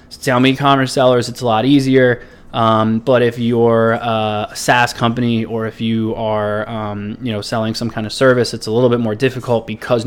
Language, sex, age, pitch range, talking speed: English, male, 20-39, 110-125 Hz, 205 wpm